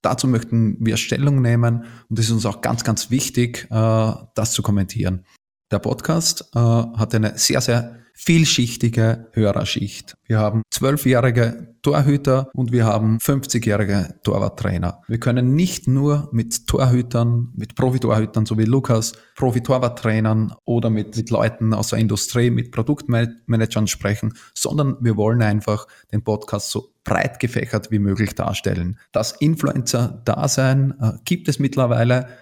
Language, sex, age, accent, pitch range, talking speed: German, male, 20-39, Austrian, 110-125 Hz, 135 wpm